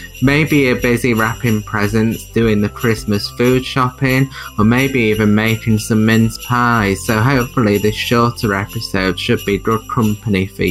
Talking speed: 150 wpm